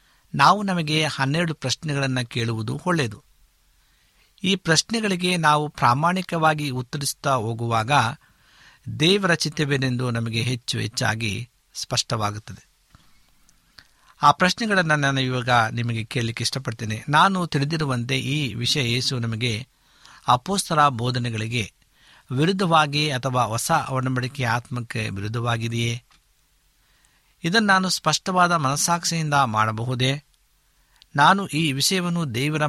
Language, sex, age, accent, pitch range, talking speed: Kannada, male, 60-79, native, 125-160 Hz, 85 wpm